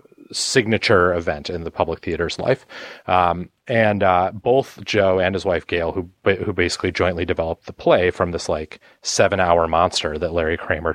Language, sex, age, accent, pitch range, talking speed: English, male, 30-49, American, 95-115 Hz, 175 wpm